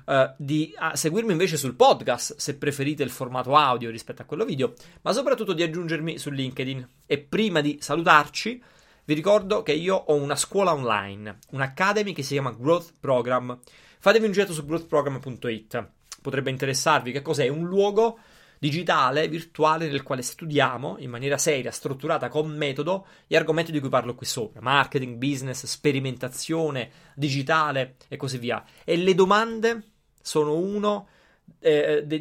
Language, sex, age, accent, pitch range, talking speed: Italian, male, 30-49, native, 130-170 Hz, 150 wpm